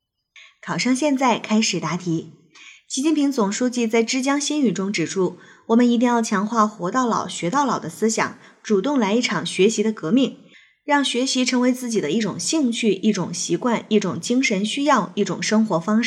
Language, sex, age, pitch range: Chinese, female, 20-39, 195-255 Hz